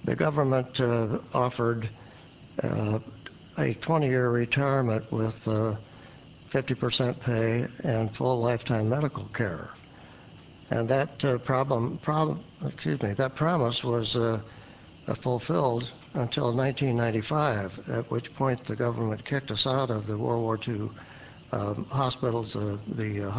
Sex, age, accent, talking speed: male, 60-79, American, 120 wpm